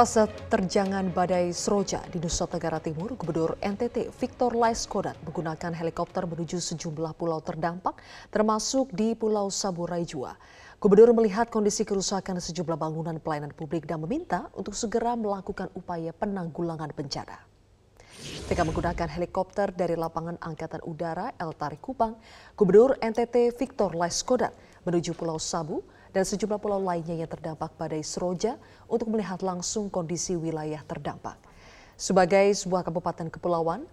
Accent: native